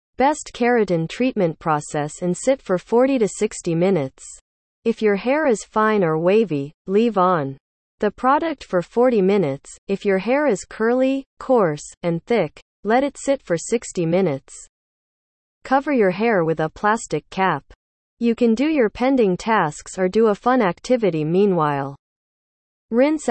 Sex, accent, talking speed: female, American, 150 wpm